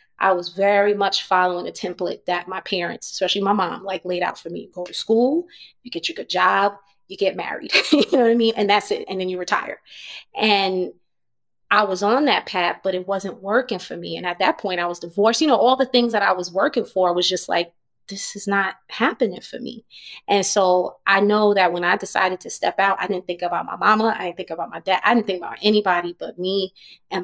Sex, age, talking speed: female, 20-39, 240 wpm